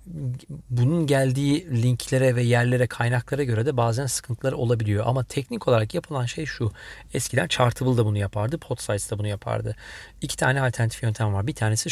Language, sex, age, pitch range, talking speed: Turkish, male, 40-59, 110-140 Hz, 160 wpm